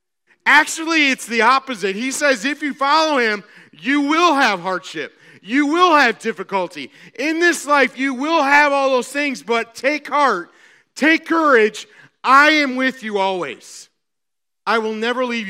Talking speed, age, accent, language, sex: 160 wpm, 40-59, American, English, male